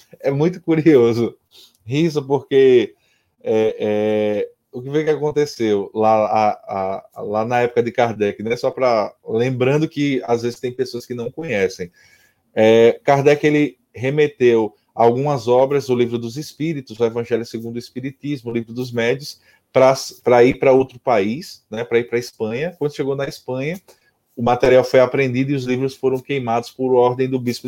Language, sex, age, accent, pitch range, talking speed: Portuguese, male, 20-39, Brazilian, 115-155 Hz, 165 wpm